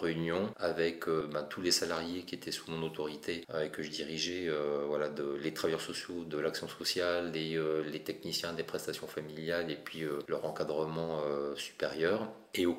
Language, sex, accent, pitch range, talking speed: French, male, French, 80-90 Hz, 190 wpm